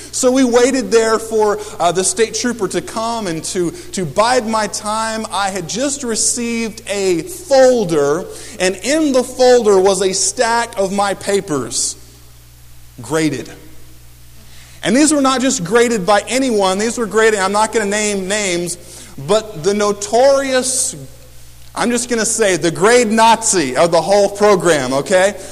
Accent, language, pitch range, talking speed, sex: American, English, 175-240 Hz, 160 wpm, male